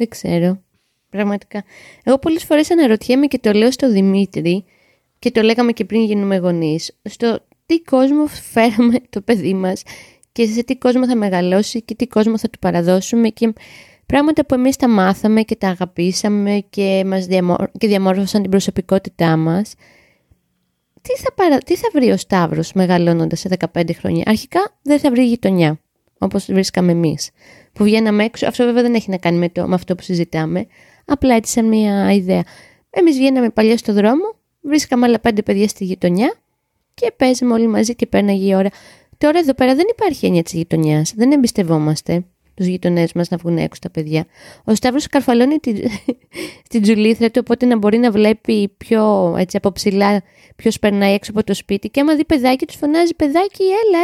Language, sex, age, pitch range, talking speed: Greek, female, 20-39, 190-255 Hz, 180 wpm